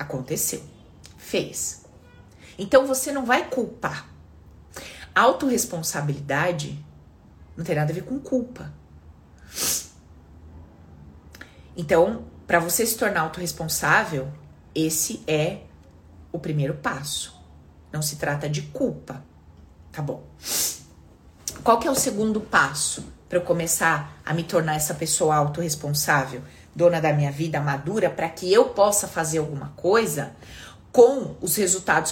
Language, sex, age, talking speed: Portuguese, female, 30-49, 120 wpm